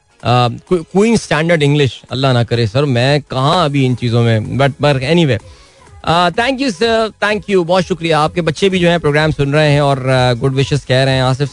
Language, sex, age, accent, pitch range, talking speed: Hindi, male, 20-39, native, 130-165 Hz, 215 wpm